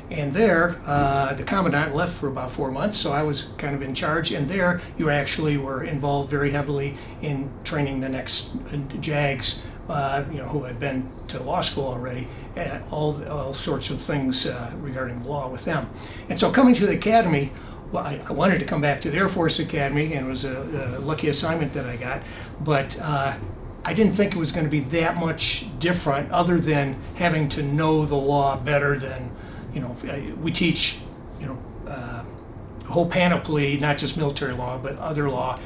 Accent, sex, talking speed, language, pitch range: American, male, 200 wpm, English, 130-155 Hz